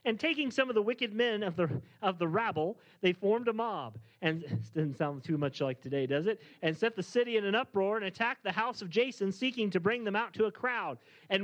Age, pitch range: 40-59, 140-210 Hz